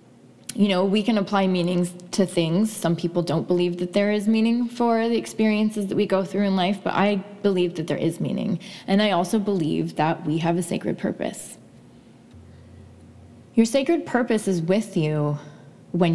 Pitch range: 165-205 Hz